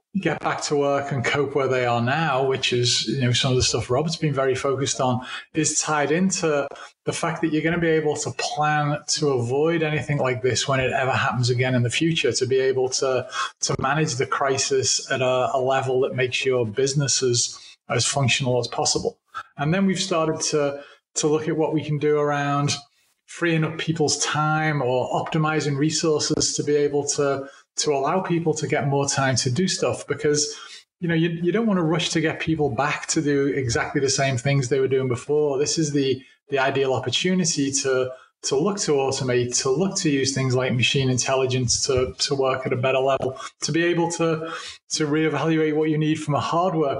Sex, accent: male, British